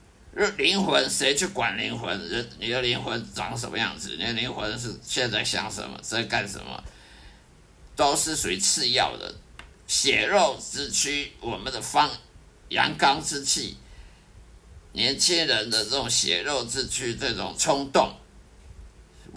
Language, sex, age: Chinese, male, 50-69